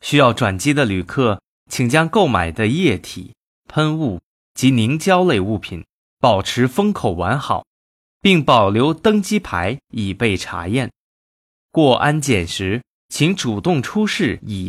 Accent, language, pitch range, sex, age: native, Chinese, 100-155 Hz, male, 20-39